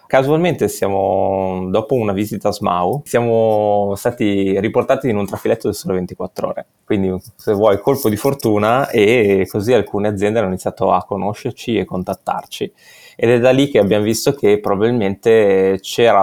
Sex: male